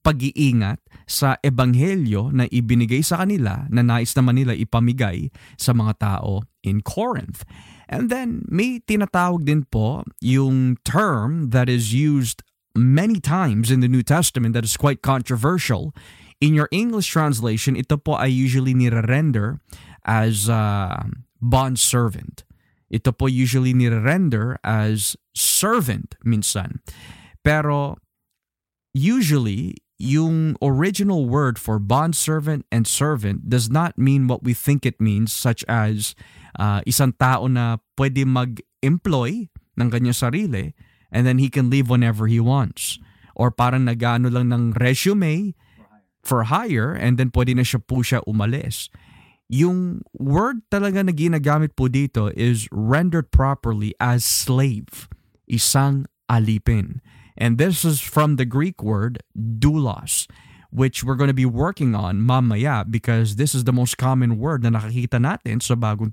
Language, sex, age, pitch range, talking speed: Filipino, male, 20-39, 115-145 Hz, 140 wpm